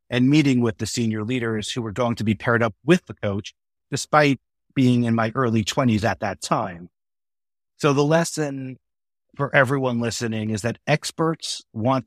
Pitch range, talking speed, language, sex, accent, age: 110-135 Hz, 175 wpm, English, male, American, 50-69